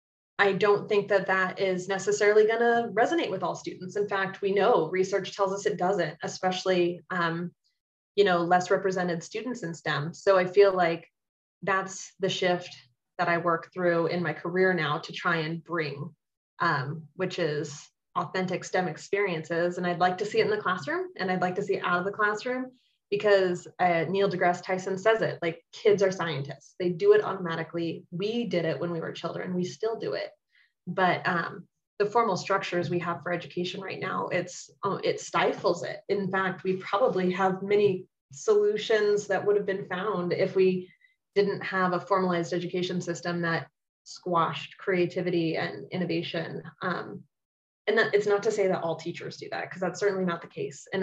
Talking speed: 190 wpm